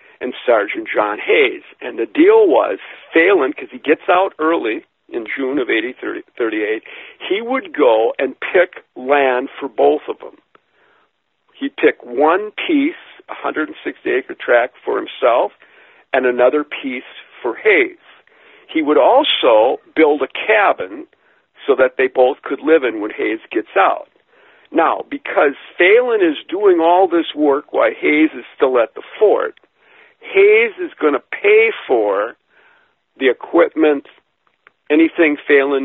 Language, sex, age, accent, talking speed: English, male, 50-69, American, 140 wpm